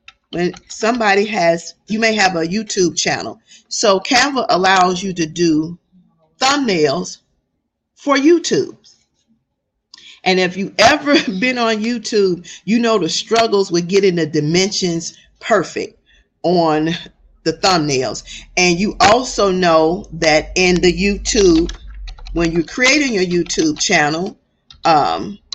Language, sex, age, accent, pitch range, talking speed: English, female, 40-59, American, 170-220 Hz, 120 wpm